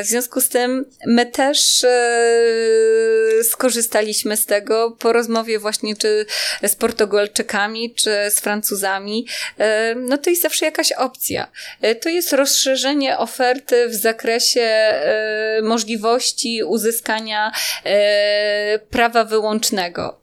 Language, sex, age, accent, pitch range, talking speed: Polish, female, 20-39, native, 210-265 Hz, 100 wpm